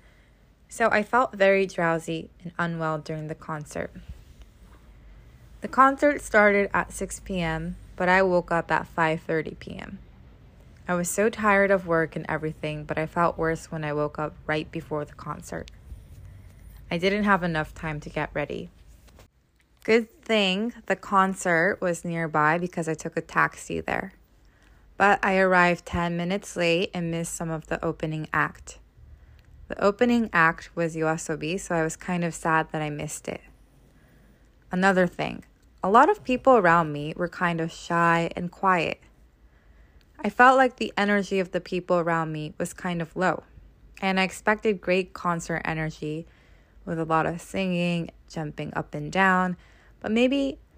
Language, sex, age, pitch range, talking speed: English, female, 20-39, 155-190 Hz, 160 wpm